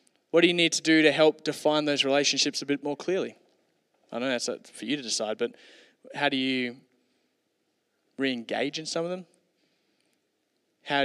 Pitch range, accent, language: 130-150 Hz, Australian, English